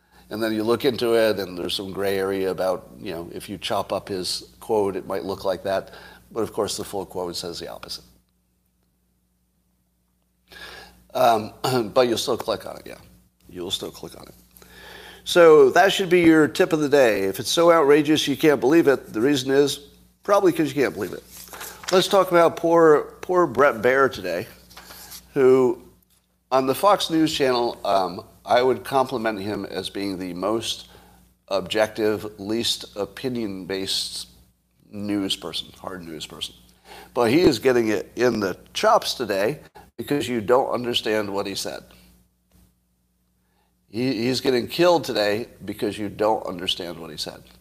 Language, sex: English, male